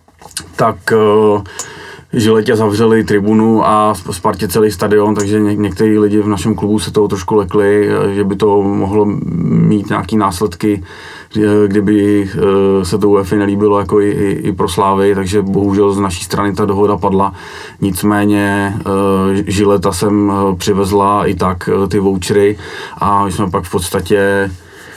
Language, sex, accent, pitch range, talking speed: Czech, male, native, 100-105 Hz, 135 wpm